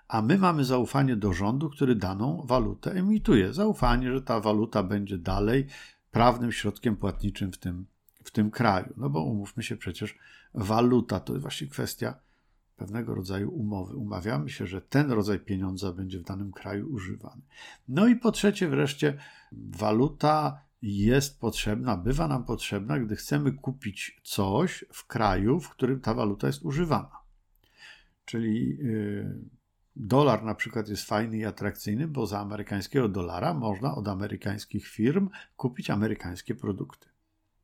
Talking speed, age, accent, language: 145 wpm, 50-69, native, Polish